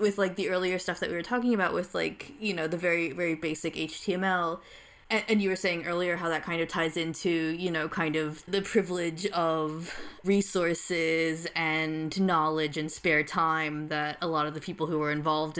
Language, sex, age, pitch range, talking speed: English, female, 20-39, 160-195 Hz, 200 wpm